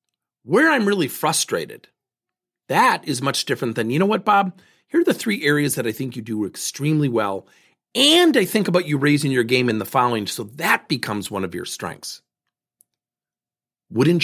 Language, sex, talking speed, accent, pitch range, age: English, male, 185 wpm, American, 115-180 Hz, 40-59